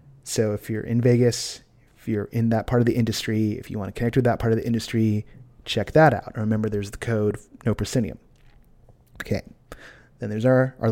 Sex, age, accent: male, 30-49, American